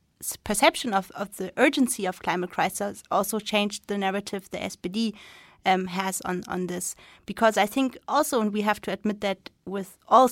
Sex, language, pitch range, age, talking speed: female, Danish, 190-220 Hz, 30-49, 180 wpm